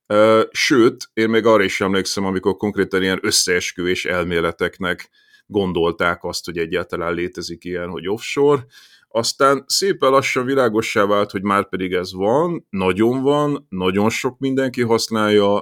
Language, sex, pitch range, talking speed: Hungarian, male, 90-130 Hz, 135 wpm